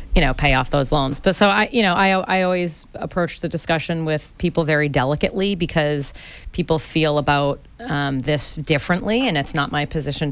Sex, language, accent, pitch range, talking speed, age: female, English, American, 145-170 Hz, 190 wpm, 30-49